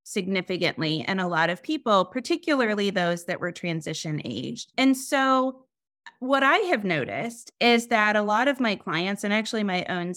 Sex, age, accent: female, 30-49, American